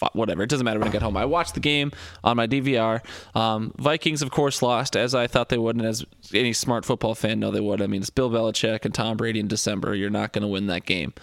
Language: English